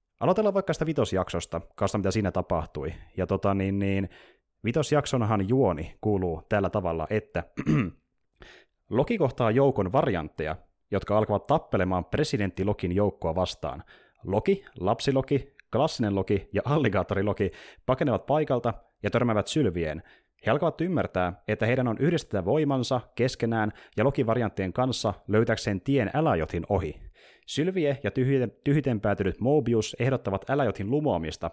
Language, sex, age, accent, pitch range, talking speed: Finnish, male, 30-49, native, 95-135 Hz, 120 wpm